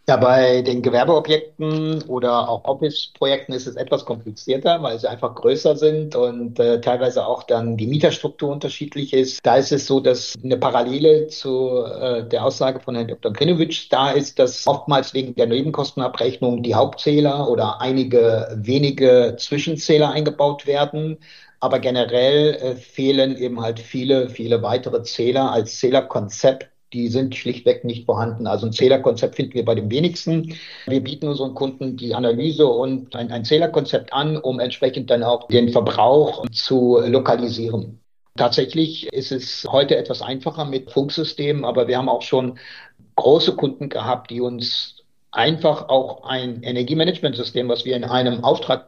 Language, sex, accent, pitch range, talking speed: German, male, German, 120-150 Hz, 155 wpm